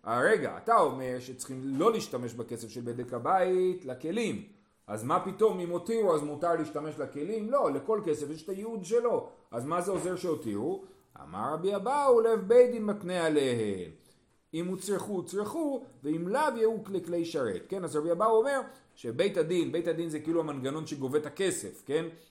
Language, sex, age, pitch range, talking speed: Hebrew, male, 40-59, 145-220 Hz, 175 wpm